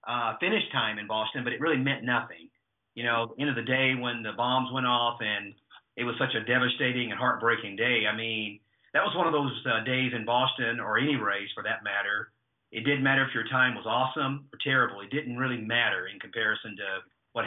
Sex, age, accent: male, 40-59, American